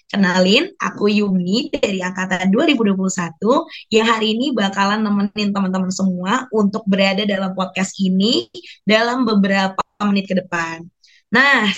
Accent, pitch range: native, 190-255 Hz